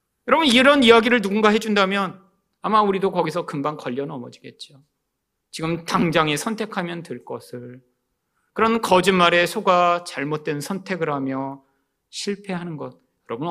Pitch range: 150-230 Hz